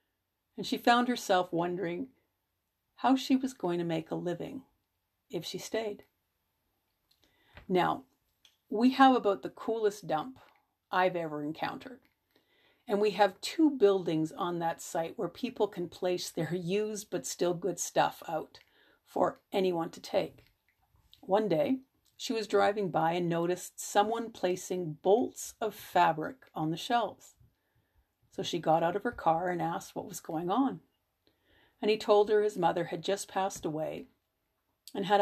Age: 50-69